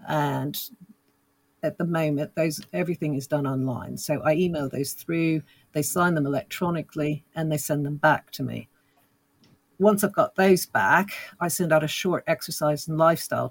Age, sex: 50-69, female